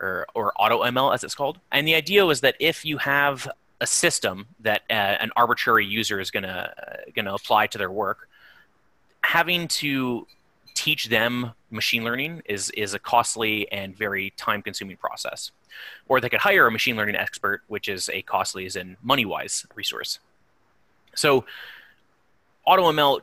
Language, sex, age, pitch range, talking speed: English, male, 30-49, 105-135 Hz, 165 wpm